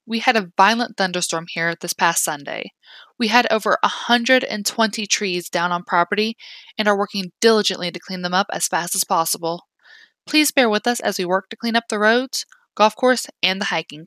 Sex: female